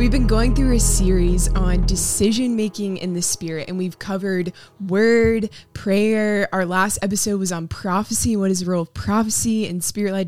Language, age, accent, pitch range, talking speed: English, 20-39, American, 180-215 Hz, 180 wpm